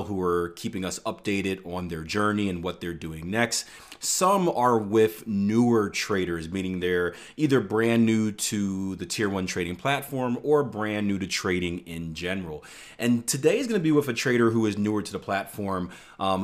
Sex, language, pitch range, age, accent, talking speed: male, English, 90-110 Hz, 30-49, American, 190 wpm